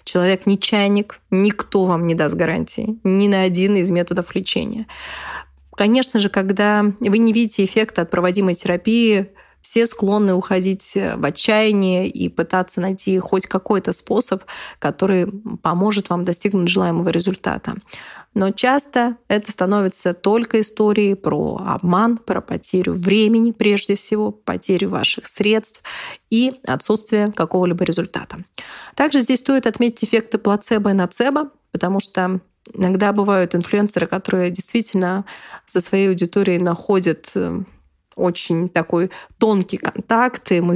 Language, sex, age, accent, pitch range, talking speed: Russian, female, 20-39, native, 180-220 Hz, 125 wpm